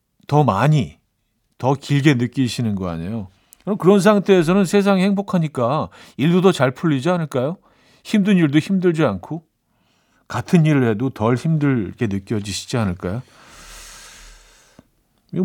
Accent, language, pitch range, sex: native, Korean, 115-160 Hz, male